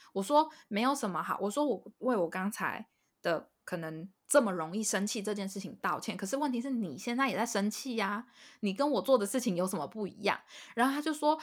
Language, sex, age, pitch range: Chinese, female, 10-29, 205-285 Hz